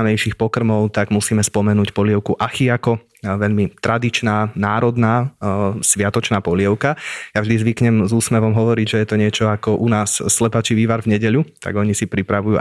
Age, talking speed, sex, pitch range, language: 20-39, 155 wpm, male, 105-115 Hz, Slovak